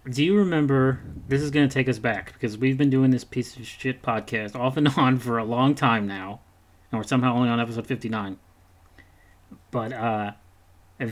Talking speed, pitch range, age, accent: 200 wpm, 95-130 Hz, 30-49, American